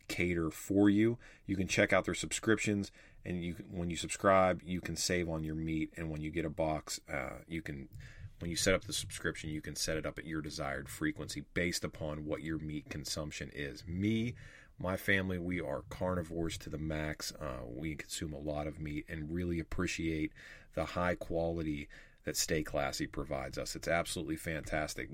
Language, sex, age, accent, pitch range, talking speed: English, male, 30-49, American, 80-95 Hz, 195 wpm